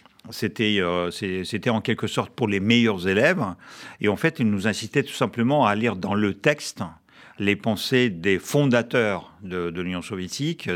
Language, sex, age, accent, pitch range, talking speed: French, male, 50-69, French, 95-120 Hz, 180 wpm